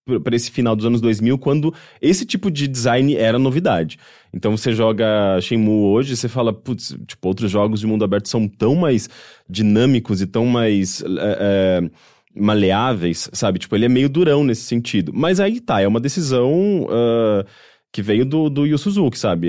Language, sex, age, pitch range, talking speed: English, male, 20-39, 105-145 Hz, 180 wpm